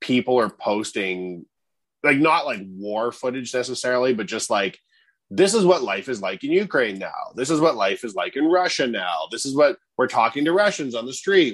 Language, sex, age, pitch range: English, male, 30-49, 110-130 Hz